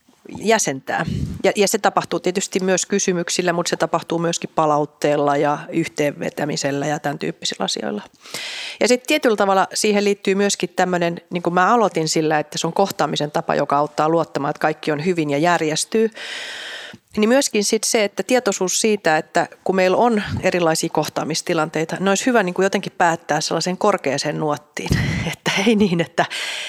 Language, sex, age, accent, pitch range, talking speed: Finnish, female, 30-49, native, 160-205 Hz, 160 wpm